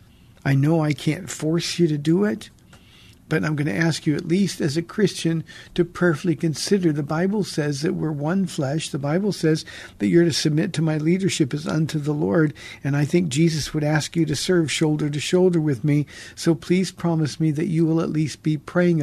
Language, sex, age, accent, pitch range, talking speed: English, male, 50-69, American, 140-170 Hz, 220 wpm